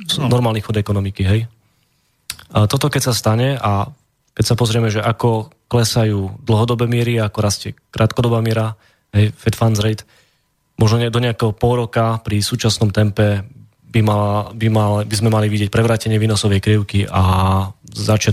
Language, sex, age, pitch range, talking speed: Slovak, male, 20-39, 105-120 Hz, 150 wpm